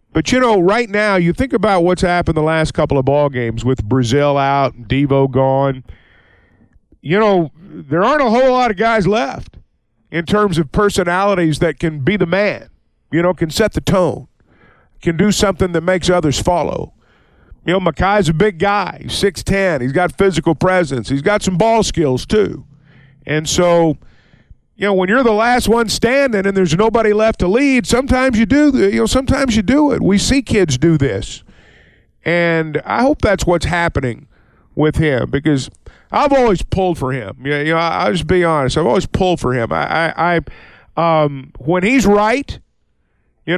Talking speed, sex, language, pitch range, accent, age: 185 wpm, male, English, 145-210 Hz, American, 50-69